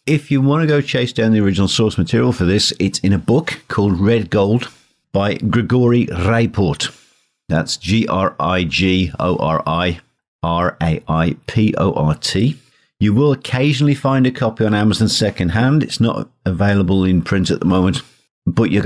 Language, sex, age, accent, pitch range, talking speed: English, male, 50-69, British, 85-115 Hz, 140 wpm